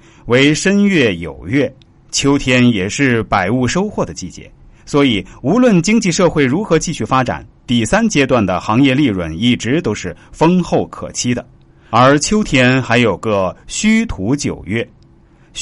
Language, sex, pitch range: Chinese, male, 105-160 Hz